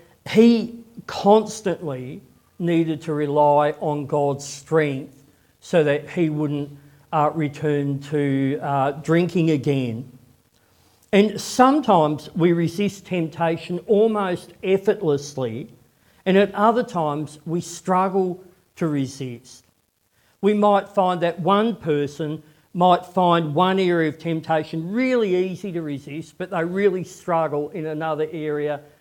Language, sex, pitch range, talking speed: English, male, 145-180 Hz, 115 wpm